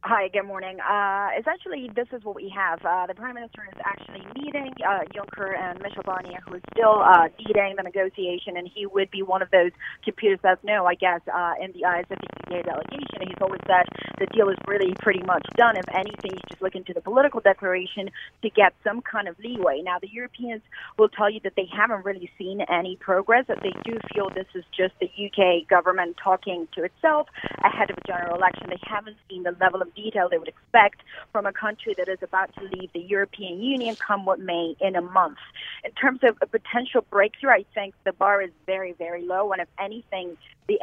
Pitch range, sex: 185-215 Hz, female